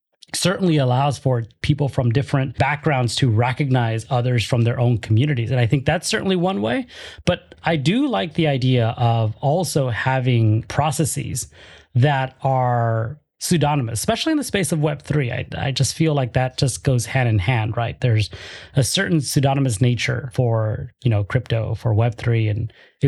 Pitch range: 120-145 Hz